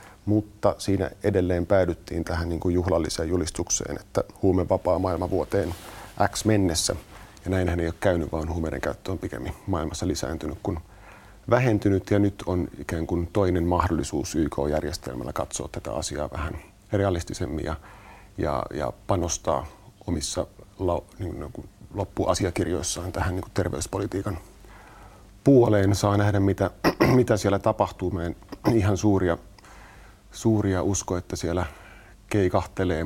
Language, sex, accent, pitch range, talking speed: Finnish, male, native, 85-100 Hz, 125 wpm